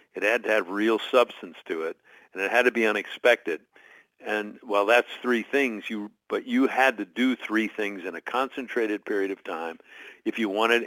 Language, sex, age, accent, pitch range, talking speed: English, male, 60-79, American, 105-165 Hz, 205 wpm